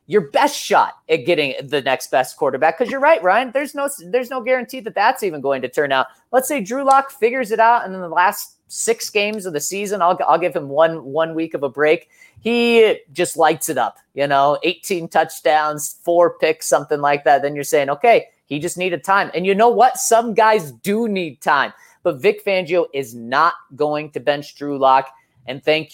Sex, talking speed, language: male, 215 wpm, English